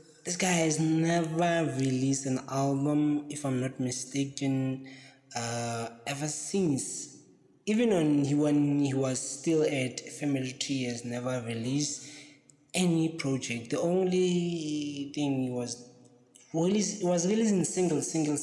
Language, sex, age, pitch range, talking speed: English, male, 20-39, 120-150 Hz, 130 wpm